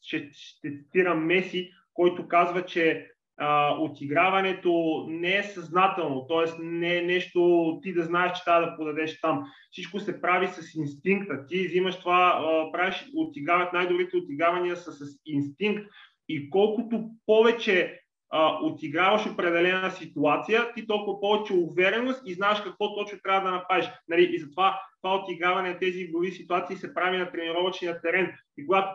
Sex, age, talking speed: male, 30-49, 150 wpm